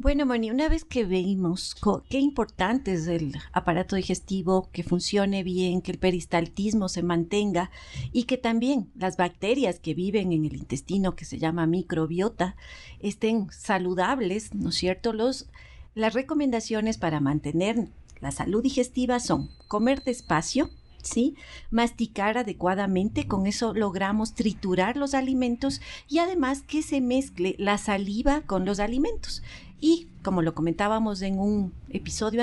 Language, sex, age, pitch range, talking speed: Spanish, female, 50-69, 185-245 Hz, 145 wpm